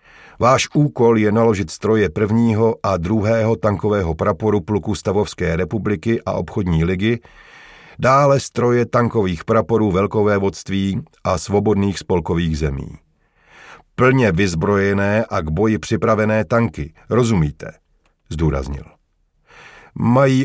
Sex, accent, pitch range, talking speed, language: male, native, 85-110 Hz, 105 wpm, Czech